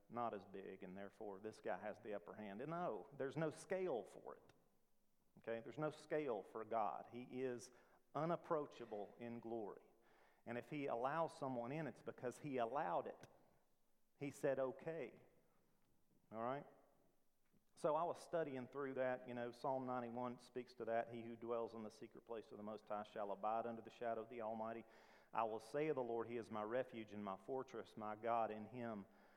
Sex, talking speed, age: male, 190 wpm, 40-59